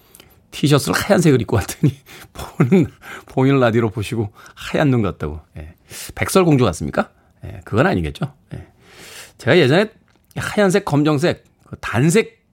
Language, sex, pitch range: Korean, male, 110-180 Hz